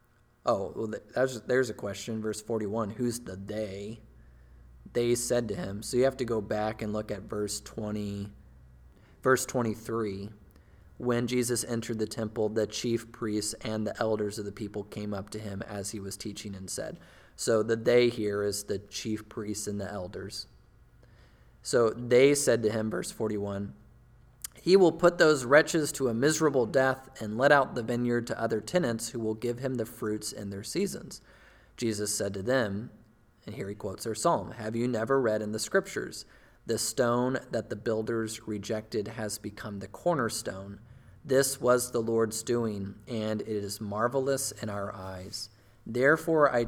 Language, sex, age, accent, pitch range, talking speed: English, male, 20-39, American, 105-125 Hz, 175 wpm